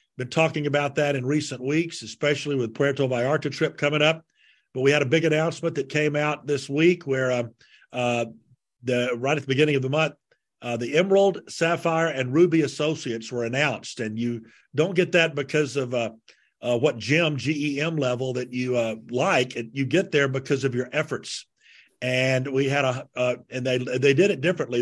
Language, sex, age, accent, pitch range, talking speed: English, male, 50-69, American, 130-160 Hz, 200 wpm